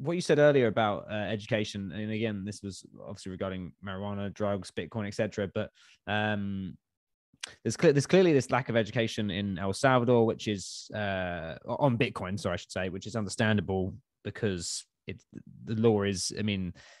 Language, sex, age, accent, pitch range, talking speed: English, male, 20-39, British, 95-115 Hz, 165 wpm